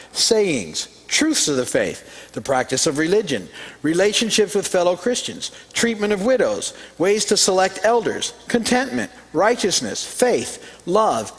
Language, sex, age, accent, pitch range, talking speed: English, male, 50-69, American, 130-215 Hz, 125 wpm